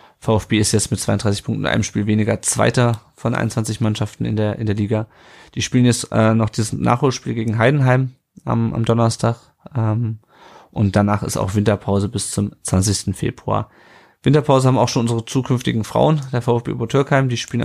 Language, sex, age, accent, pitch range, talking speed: German, male, 30-49, German, 110-130 Hz, 185 wpm